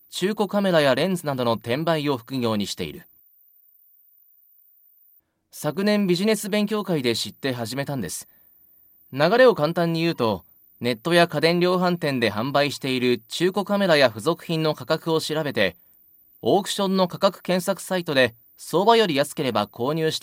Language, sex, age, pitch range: Japanese, male, 30-49, 115-175 Hz